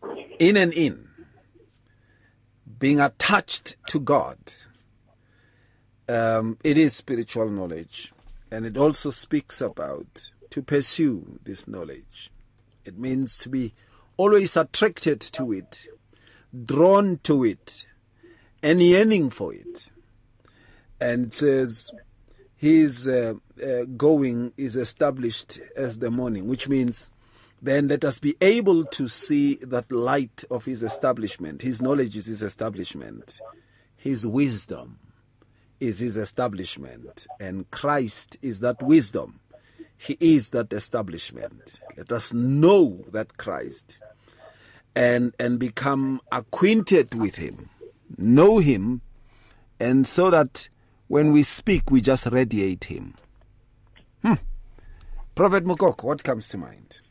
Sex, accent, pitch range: male, South African, 110-145 Hz